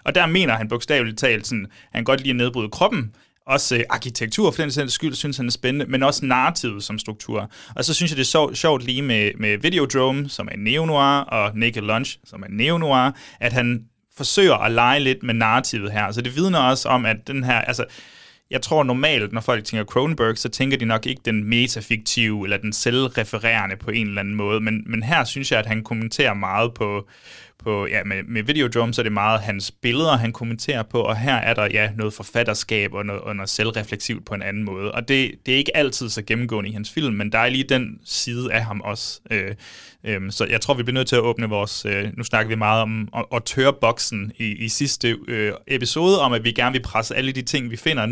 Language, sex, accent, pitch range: Danish, male, native, 110-130 Hz